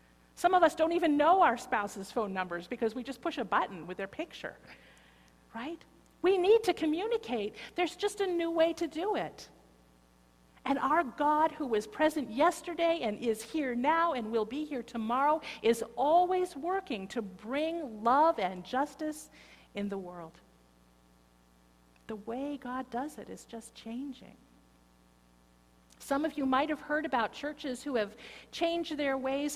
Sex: female